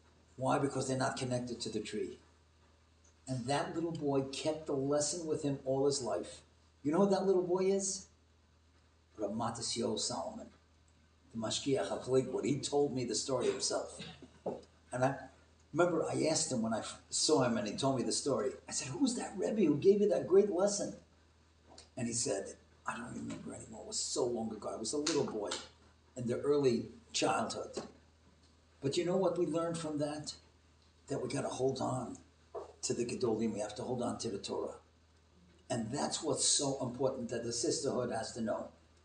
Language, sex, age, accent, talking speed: English, male, 50-69, American, 185 wpm